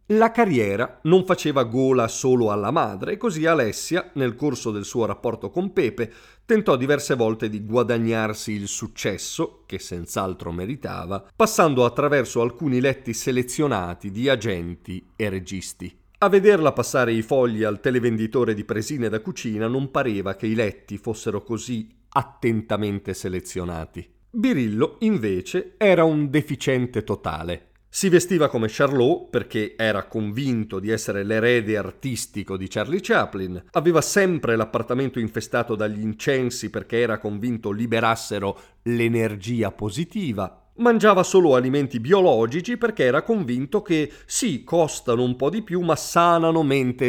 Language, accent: Italian, native